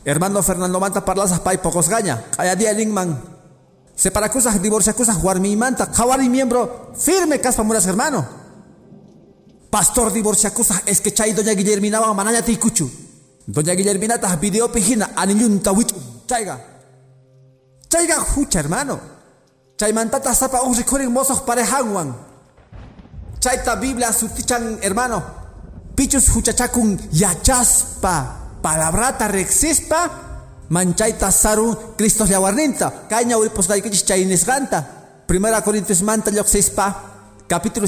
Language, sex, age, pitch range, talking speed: Spanish, male, 40-59, 175-235 Hz, 120 wpm